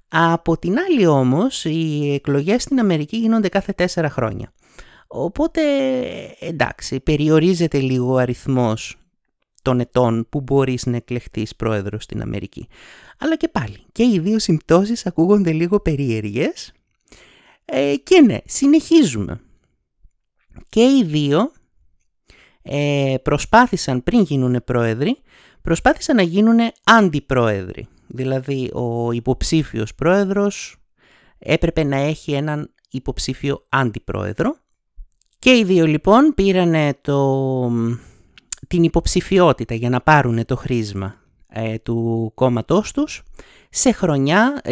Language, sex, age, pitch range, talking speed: Greek, male, 30-49, 125-195 Hz, 105 wpm